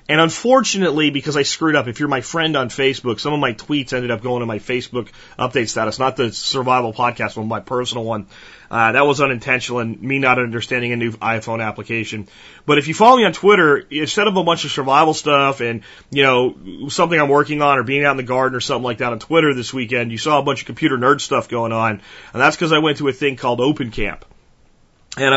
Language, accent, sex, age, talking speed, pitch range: English, American, male, 30-49, 240 wpm, 120-150 Hz